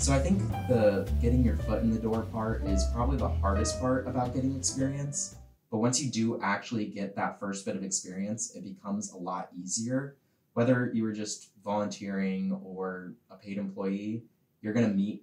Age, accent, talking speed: 20-39, American, 190 wpm